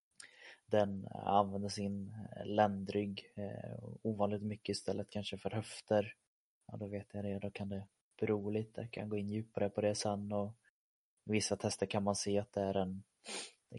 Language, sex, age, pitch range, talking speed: Swedish, male, 20-39, 95-105 Hz, 170 wpm